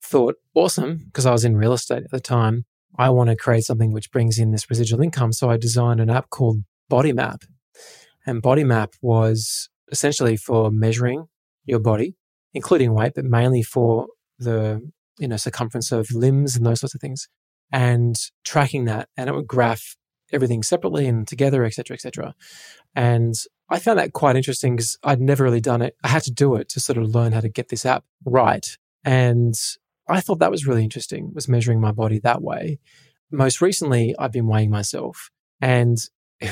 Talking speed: 195 wpm